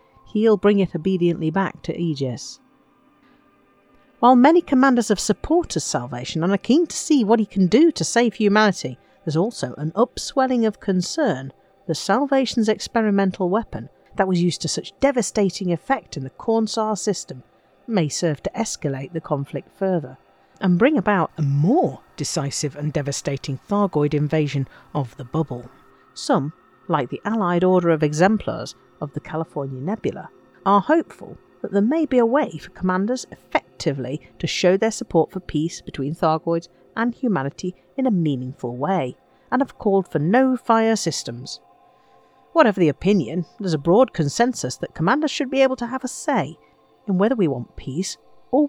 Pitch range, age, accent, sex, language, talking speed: 155-235 Hz, 50-69, British, female, English, 160 wpm